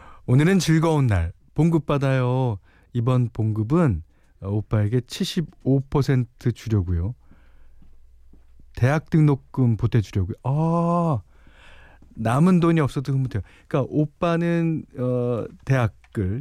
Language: Korean